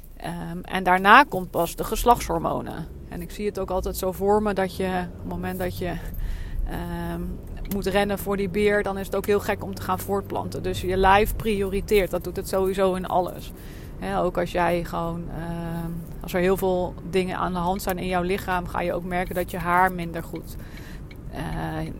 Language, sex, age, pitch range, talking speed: Dutch, female, 30-49, 175-205 Hz, 210 wpm